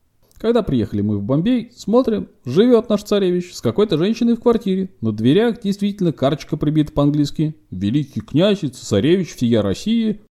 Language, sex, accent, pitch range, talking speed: Russian, male, native, 125-205 Hz, 145 wpm